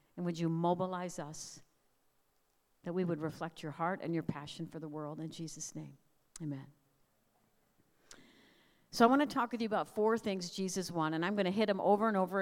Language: English